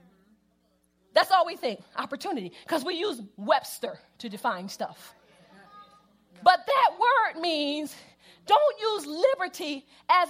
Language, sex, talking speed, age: English, female, 115 wpm, 40-59